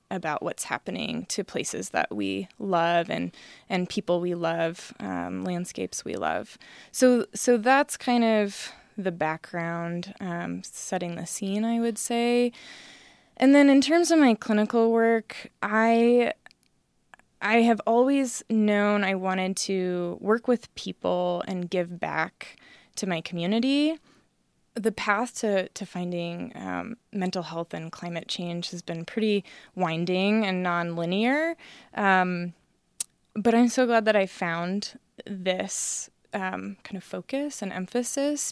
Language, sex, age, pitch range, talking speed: English, female, 20-39, 175-230 Hz, 135 wpm